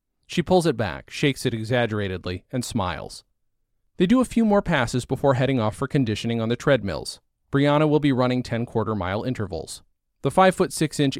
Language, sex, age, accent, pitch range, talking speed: English, male, 40-59, American, 110-140 Hz, 170 wpm